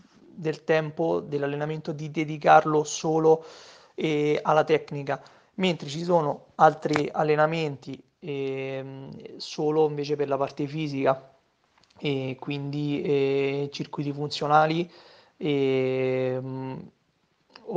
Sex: male